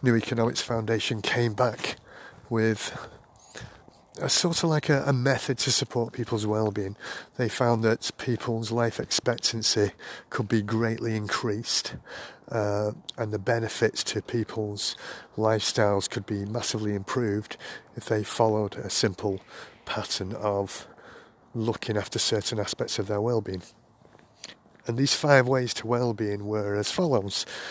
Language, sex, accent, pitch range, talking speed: English, male, British, 105-120 Hz, 130 wpm